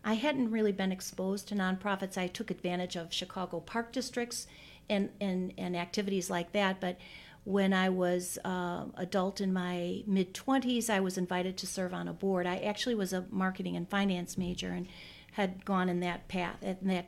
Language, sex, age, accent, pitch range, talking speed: English, female, 40-59, American, 180-195 Hz, 190 wpm